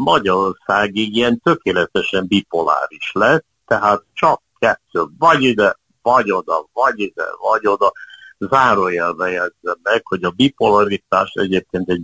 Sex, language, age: male, Hungarian, 60-79